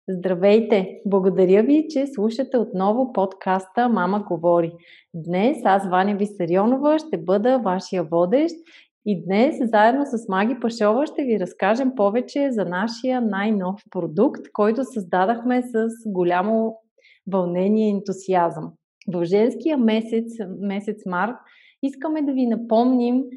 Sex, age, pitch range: female, 30-49, 190-250 Hz